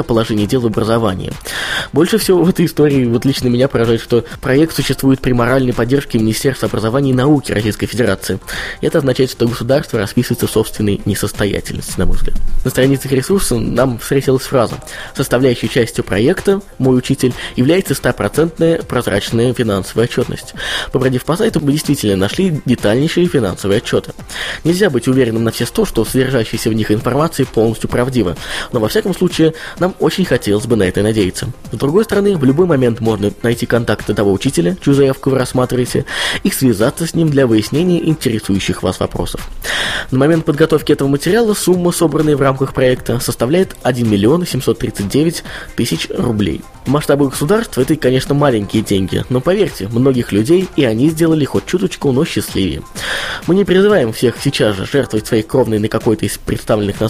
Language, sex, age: Russian, male, 20-39